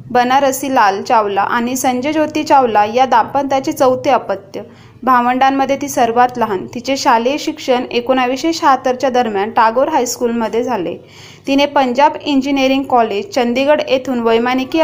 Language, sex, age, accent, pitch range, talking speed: Marathi, female, 20-39, native, 245-285 Hz, 125 wpm